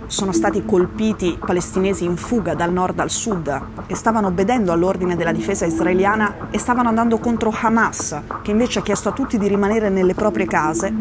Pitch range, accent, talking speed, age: 170-205 Hz, native, 180 wpm, 20-39